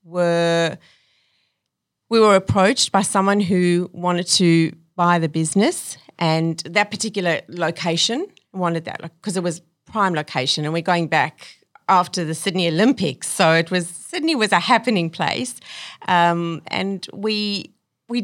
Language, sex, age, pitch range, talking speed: English, female, 40-59, 175-215 Hz, 145 wpm